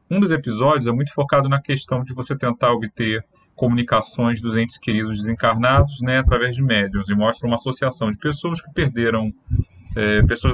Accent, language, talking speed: Brazilian, Portuguese, 175 wpm